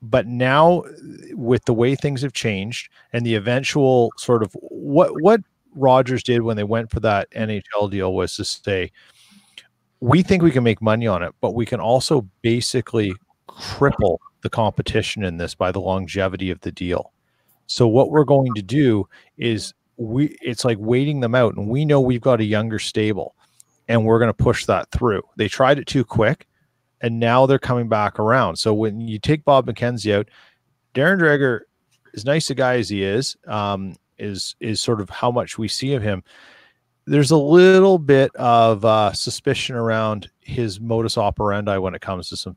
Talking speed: 185 wpm